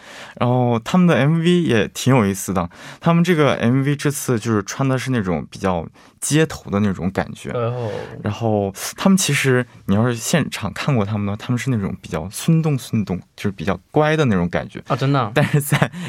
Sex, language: male, Korean